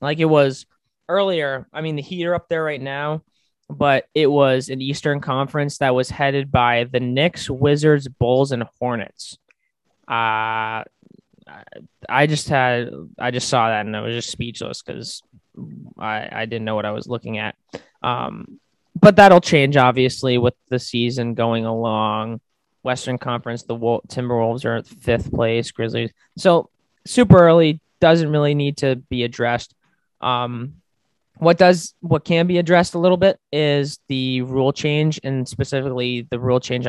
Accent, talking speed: American, 160 wpm